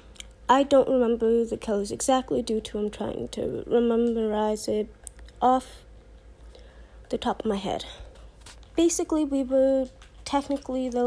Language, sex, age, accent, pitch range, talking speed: English, female, 20-39, American, 230-275 Hz, 130 wpm